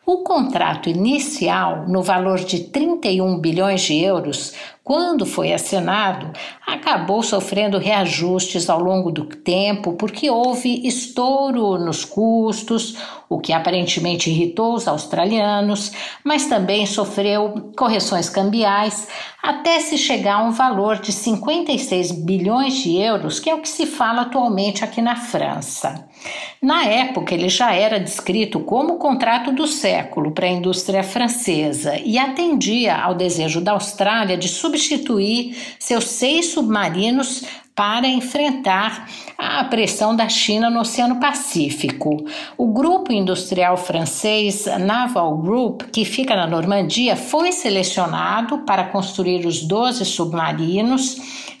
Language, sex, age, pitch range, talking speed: Portuguese, female, 60-79, 185-255 Hz, 125 wpm